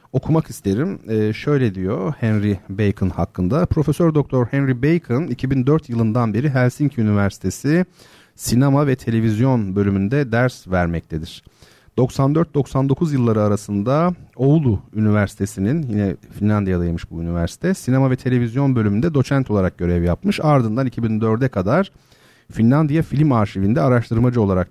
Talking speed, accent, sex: 115 wpm, native, male